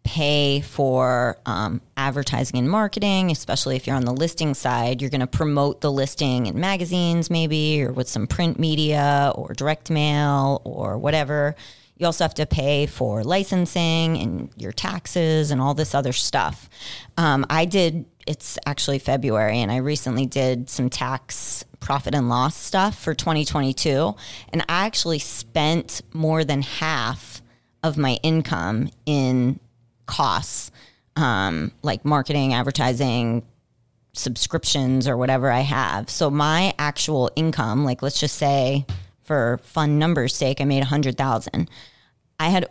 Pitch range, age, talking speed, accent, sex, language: 125-155 Hz, 30-49, 150 wpm, American, female, English